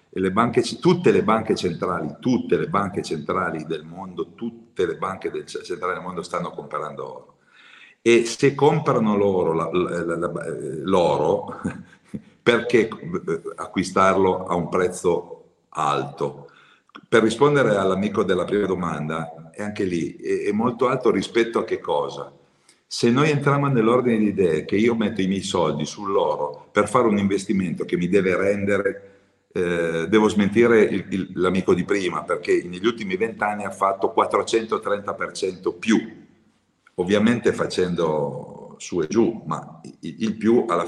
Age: 50-69